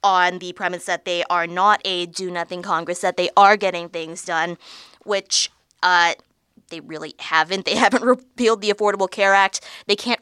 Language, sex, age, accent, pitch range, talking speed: English, female, 20-39, American, 175-210 Hz, 175 wpm